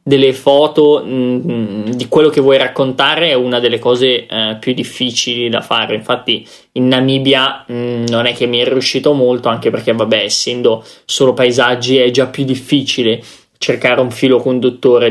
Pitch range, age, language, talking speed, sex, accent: 120-140 Hz, 20-39, Italian, 165 wpm, male, native